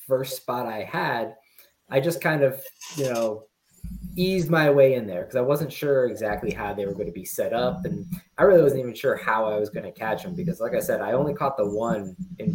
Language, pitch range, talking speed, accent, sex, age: English, 110-180 Hz, 245 wpm, American, male, 20-39